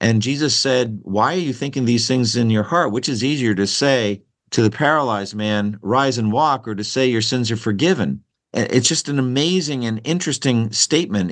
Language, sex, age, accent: English, male, 50-69, American